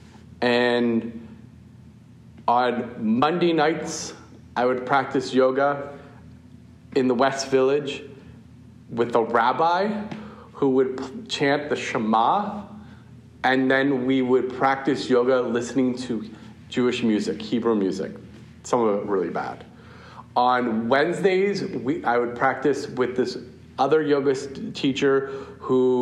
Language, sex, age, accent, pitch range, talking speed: English, male, 40-59, American, 120-150 Hz, 110 wpm